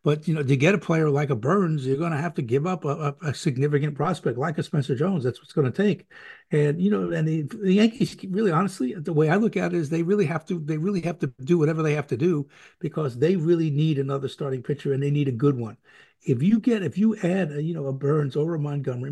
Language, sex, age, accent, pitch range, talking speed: English, male, 60-79, American, 140-175 Hz, 275 wpm